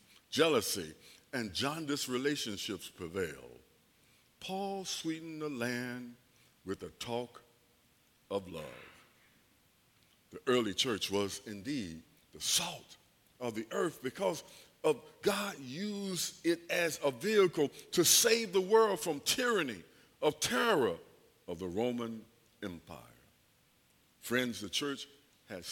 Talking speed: 110 wpm